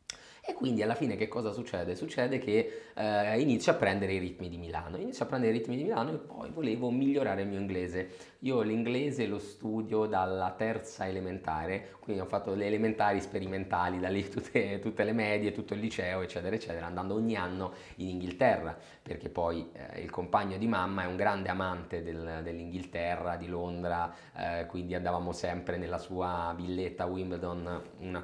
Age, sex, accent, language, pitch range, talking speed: 20-39, male, native, Italian, 90-105 Hz, 180 wpm